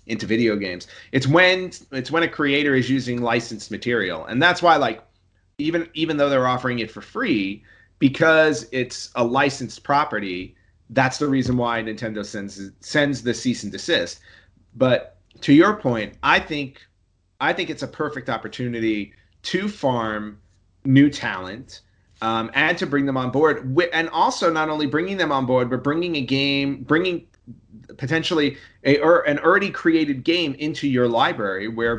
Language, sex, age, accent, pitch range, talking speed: English, male, 30-49, American, 110-145 Hz, 165 wpm